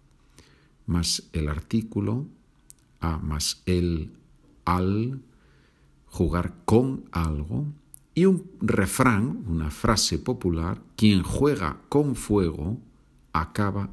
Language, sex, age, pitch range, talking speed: Spanish, male, 50-69, 85-130 Hz, 90 wpm